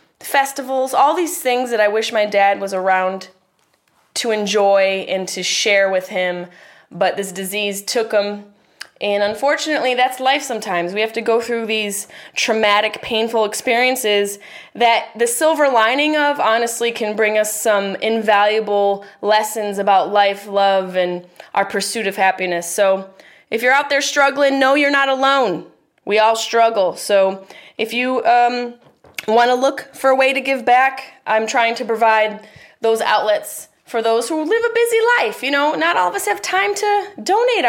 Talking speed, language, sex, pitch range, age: 170 wpm, English, female, 195-270 Hz, 20-39